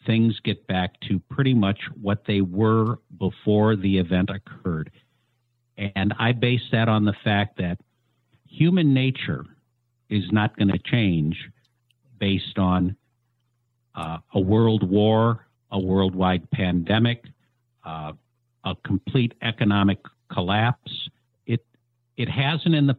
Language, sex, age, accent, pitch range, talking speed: English, male, 50-69, American, 100-130 Hz, 125 wpm